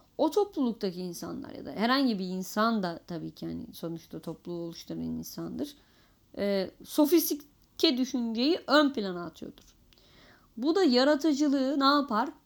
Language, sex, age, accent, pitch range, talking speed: Turkish, female, 30-49, native, 205-295 Hz, 130 wpm